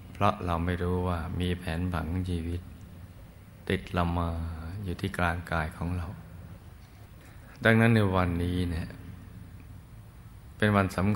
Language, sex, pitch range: Thai, male, 90-100 Hz